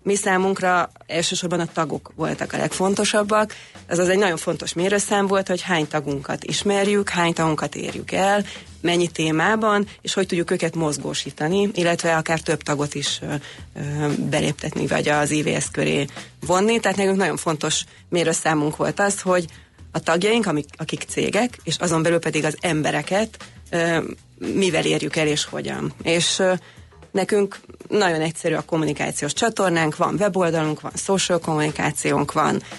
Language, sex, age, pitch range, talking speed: Hungarian, female, 30-49, 155-195 Hz, 140 wpm